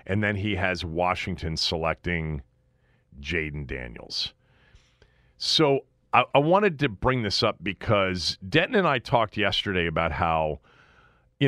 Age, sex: 40-59, male